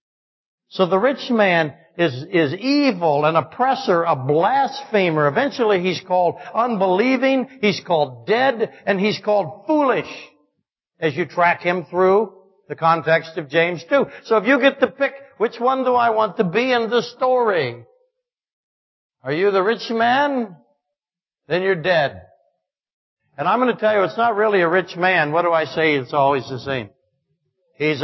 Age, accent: 60-79, American